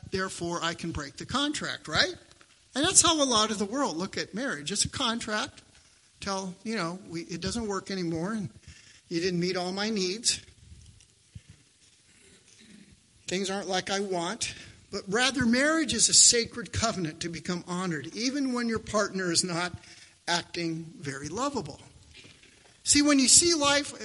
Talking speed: 160 wpm